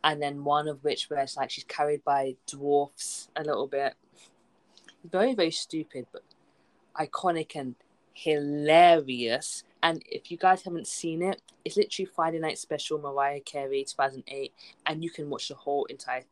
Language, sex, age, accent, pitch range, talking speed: English, female, 20-39, British, 135-185 Hz, 160 wpm